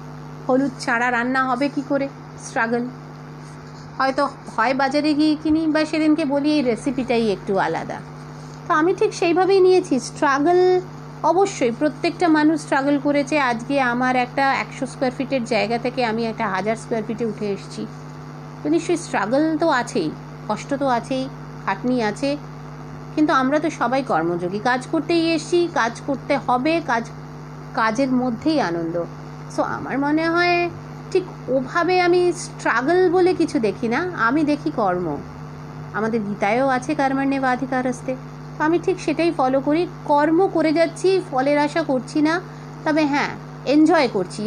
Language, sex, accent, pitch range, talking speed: Bengali, female, native, 245-315 Hz, 145 wpm